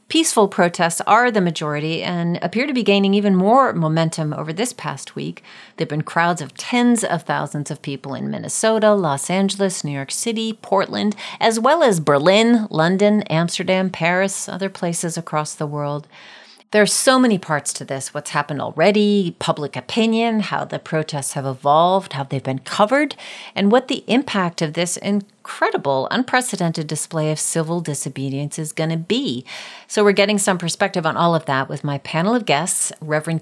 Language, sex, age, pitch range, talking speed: English, female, 40-59, 150-200 Hz, 180 wpm